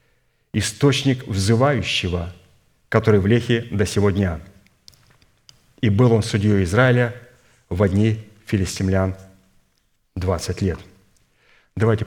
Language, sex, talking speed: Russian, male, 95 wpm